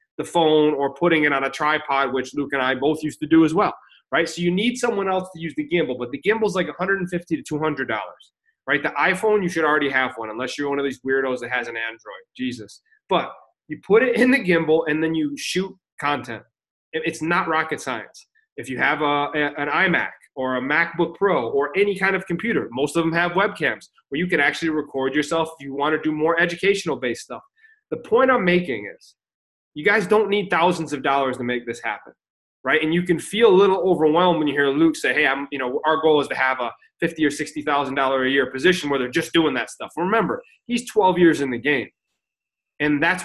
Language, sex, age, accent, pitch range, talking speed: English, male, 30-49, American, 140-190 Hz, 230 wpm